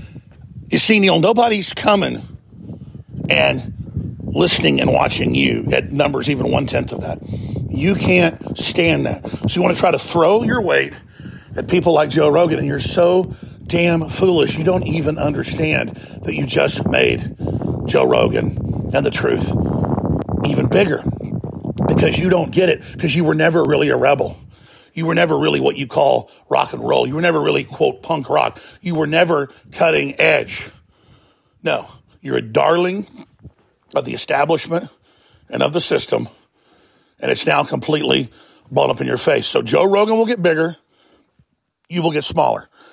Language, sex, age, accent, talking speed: English, male, 40-59, American, 165 wpm